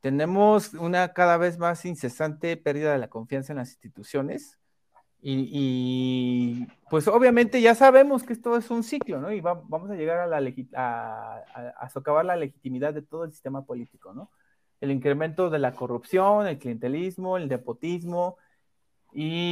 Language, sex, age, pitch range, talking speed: Spanish, male, 30-49, 130-190 Hz, 170 wpm